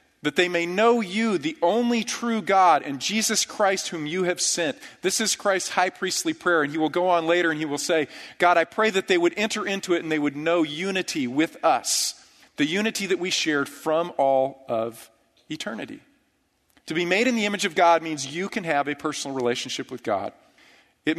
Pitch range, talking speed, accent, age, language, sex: 140-185 Hz, 210 wpm, American, 40-59, English, male